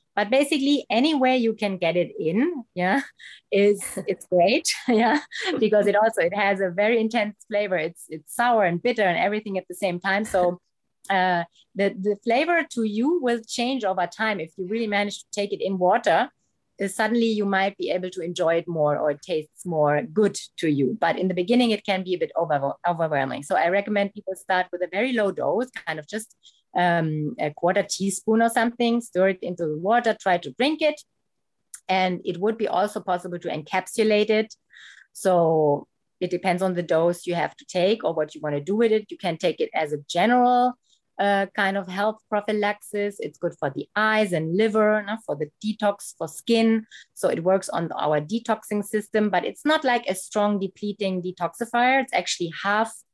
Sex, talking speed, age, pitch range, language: female, 200 wpm, 30-49, 180-225 Hz, English